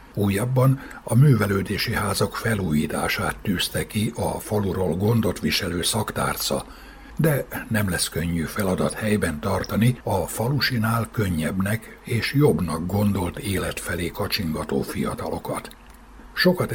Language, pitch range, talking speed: Hungarian, 95-125 Hz, 110 wpm